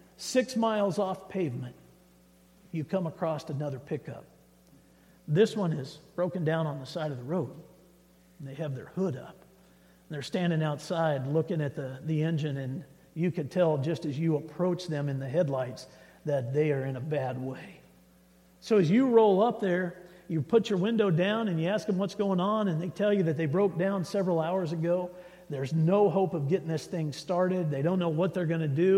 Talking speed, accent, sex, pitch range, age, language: 205 wpm, American, male, 150-200 Hz, 50-69, English